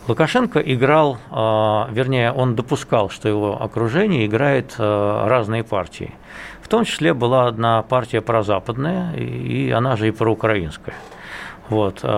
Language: Russian